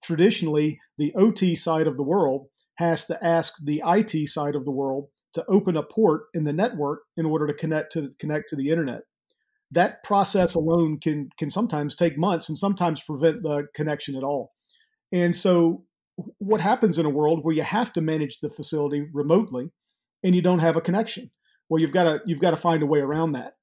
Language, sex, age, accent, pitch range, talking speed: English, male, 40-59, American, 150-175 Hz, 200 wpm